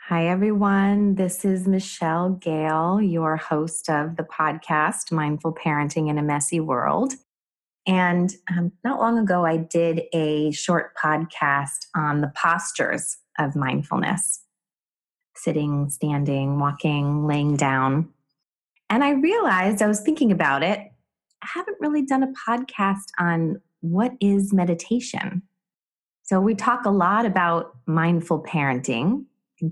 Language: English